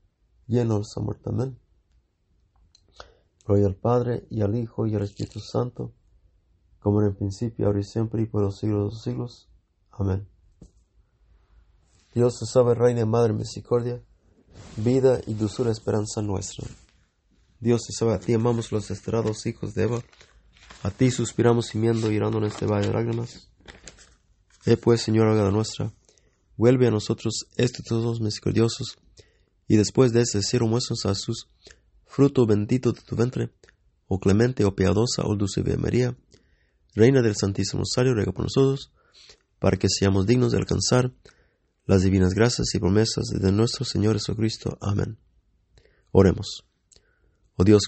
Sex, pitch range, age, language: male, 95-120 Hz, 30-49, English